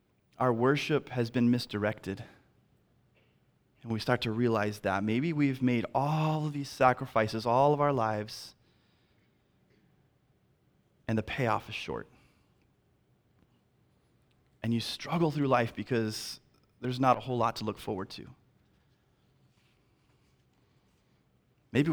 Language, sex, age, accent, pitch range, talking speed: English, male, 30-49, American, 115-155 Hz, 120 wpm